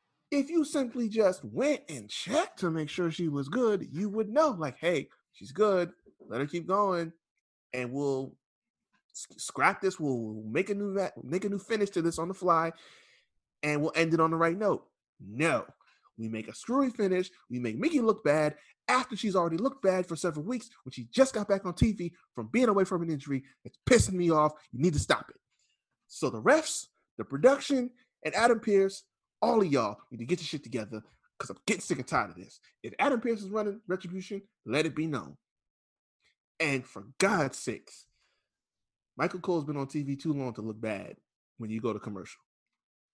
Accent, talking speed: American, 205 wpm